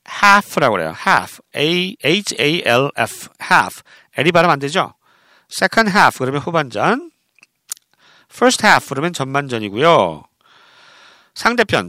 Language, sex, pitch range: Korean, male, 140-230 Hz